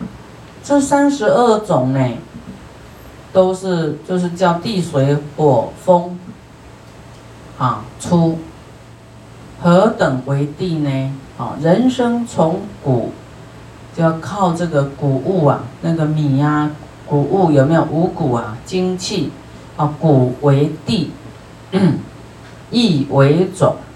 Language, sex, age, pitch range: Chinese, female, 40-59, 135-175 Hz